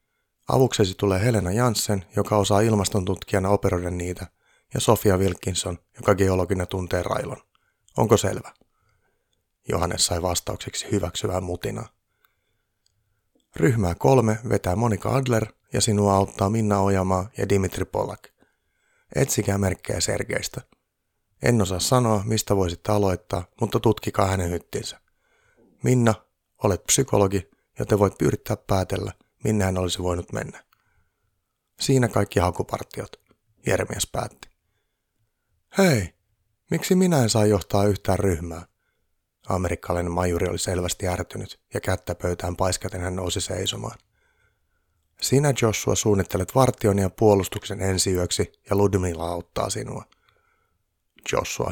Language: Finnish